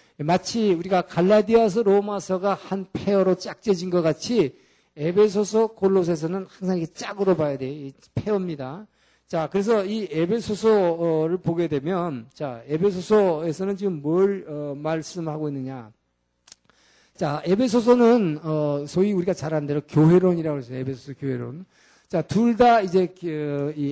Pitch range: 140-200 Hz